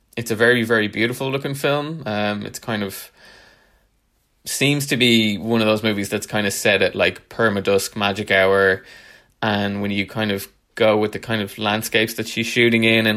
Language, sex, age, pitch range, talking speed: English, male, 20-39, 100-115 Hz, 200 wpm